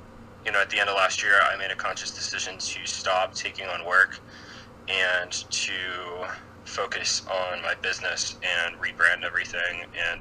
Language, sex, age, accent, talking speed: English, male, 20-39, American, 165 wpm